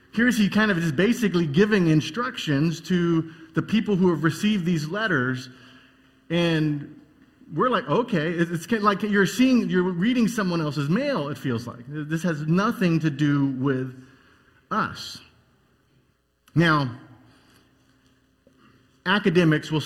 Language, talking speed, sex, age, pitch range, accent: English, 125 wpm, male, 30-49, 125-170 Hz, American